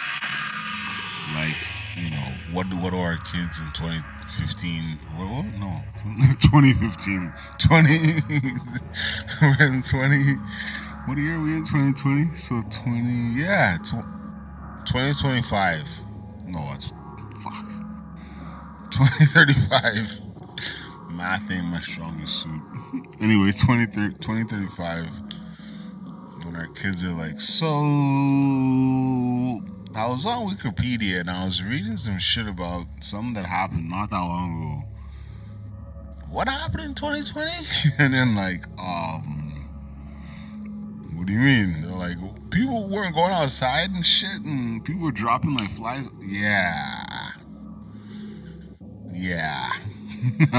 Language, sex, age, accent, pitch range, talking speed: English, male, 20-39, American, 90-145 Hz, 110 wpm